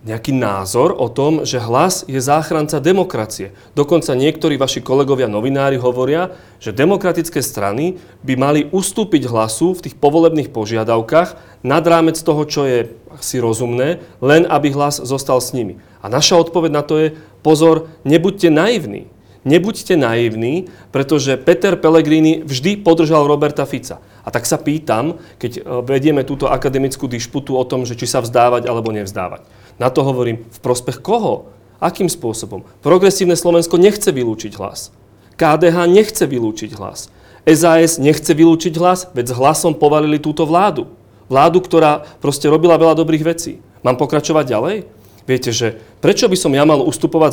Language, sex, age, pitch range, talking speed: Slovak, male, 40-59, 125-165 Hz, 150 wpm